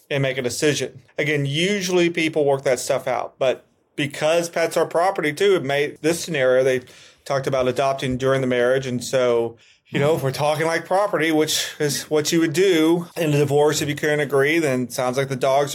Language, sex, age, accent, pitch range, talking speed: English, male, 30-49, American, 130-150 Hz, 205 wpm